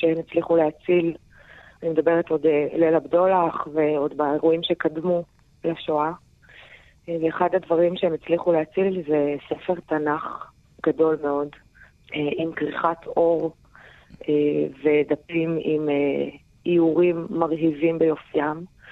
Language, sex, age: Hebrew, female, 30-49